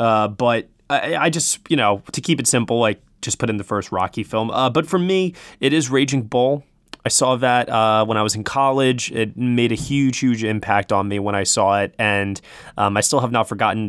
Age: 20-39